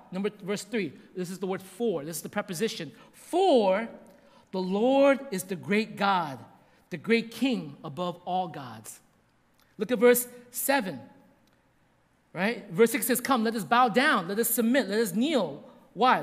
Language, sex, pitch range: English, male, 215-280 Hz